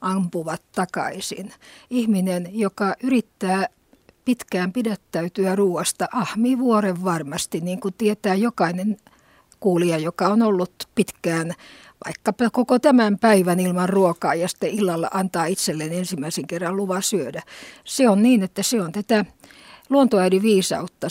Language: Finnish